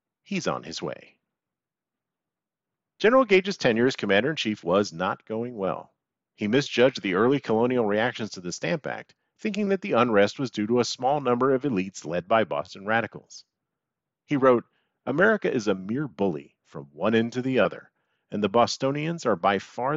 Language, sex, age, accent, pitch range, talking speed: English, male, 40-59, American, 105-140 Hz, 175 wpm